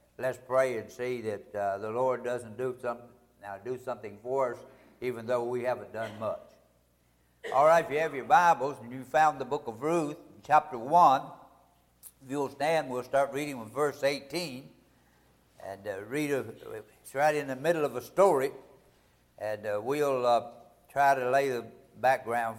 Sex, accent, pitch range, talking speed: male, American, 125-165 Hz, 180 wpm